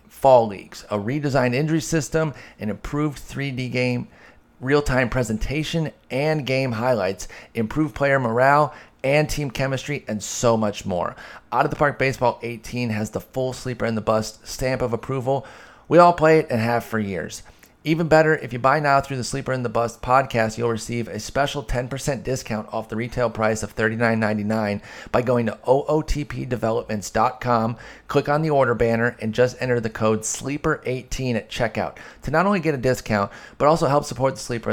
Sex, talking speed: male, 180 wpm